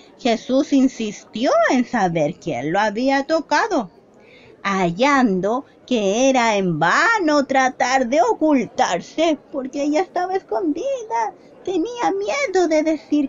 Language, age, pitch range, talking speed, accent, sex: Spanish, 30-49, 260-360 Hz, 110 wpm, American, female